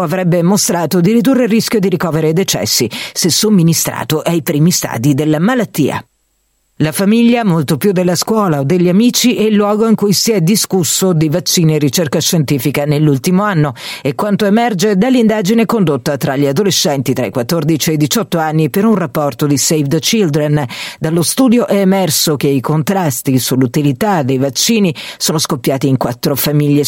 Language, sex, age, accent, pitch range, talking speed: Italian, female, 50-69, native, 145-195 Hz, 175 wpm